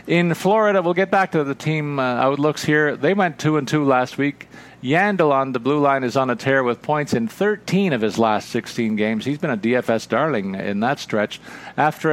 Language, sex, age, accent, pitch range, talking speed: English, male, 50-69, American, 115-150 Hz, 225 wpm